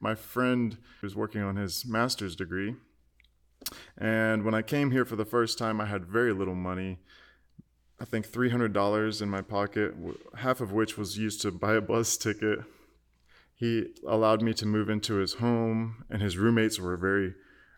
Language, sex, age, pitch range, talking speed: English, male, 20-39, 95-115 Hz, 170 wpm